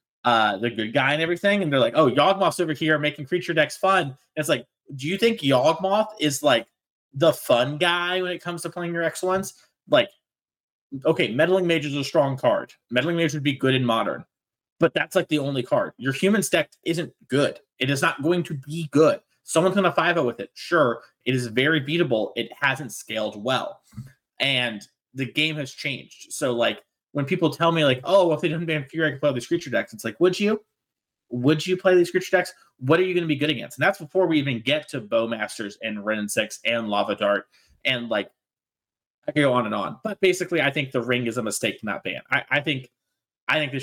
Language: English